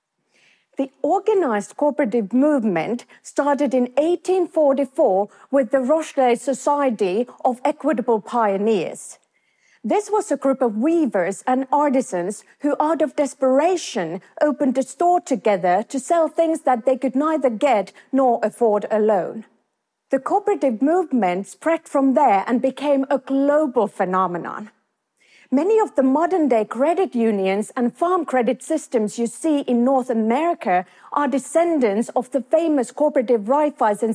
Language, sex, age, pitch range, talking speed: English, female, 40-59, 230-300 Hz, 130 wpm